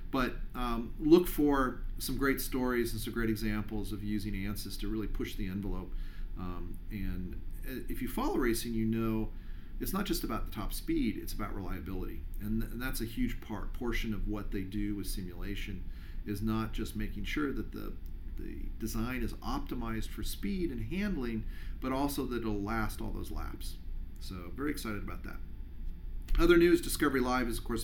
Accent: American